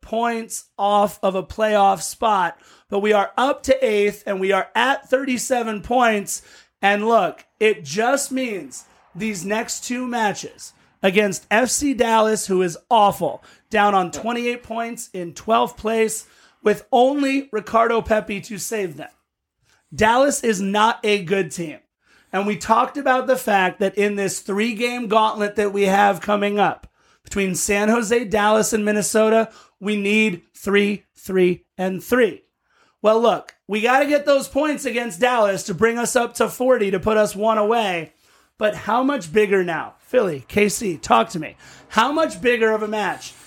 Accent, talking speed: American, 165 wpm